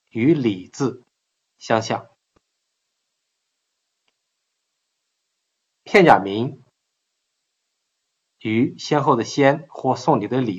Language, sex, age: Chinese, male, 50-69